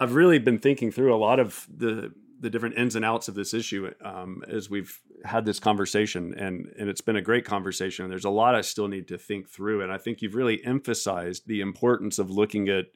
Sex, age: male, 40-59